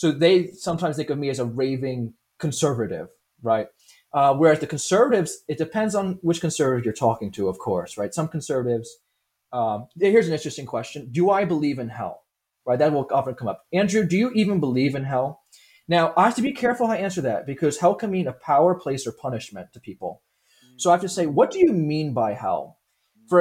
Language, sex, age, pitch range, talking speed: English, male, 30-49, 130-175 Hz, 215 wpm